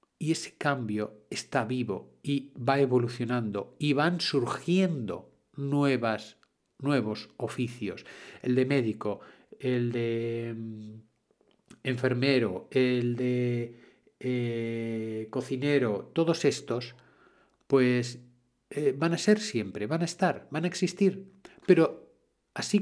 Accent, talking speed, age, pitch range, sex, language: Spanish, 105 wpm, 50-69, 115-145 Hz, male, Spanish